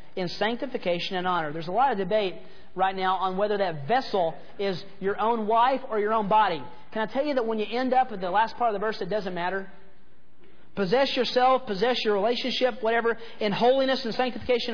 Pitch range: 195-255 Hz